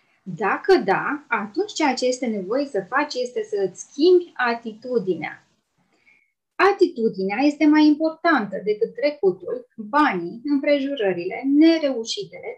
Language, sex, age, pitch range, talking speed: Romanian, female, 20-39, 220-315 Hz, 110 wpm